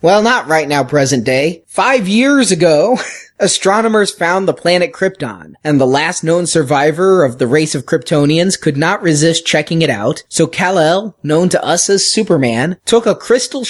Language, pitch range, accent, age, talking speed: English, 145-180 Hz, American, 30-49, 175 wpm